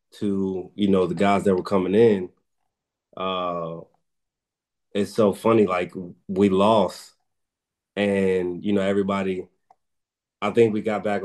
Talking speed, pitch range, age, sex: 135 wpm, 90-105 Hz, 20-39, male